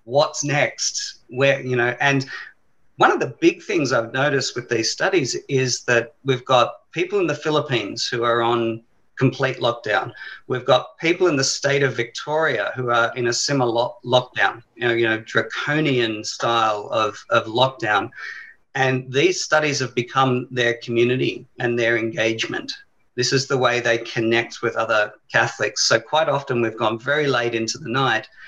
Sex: male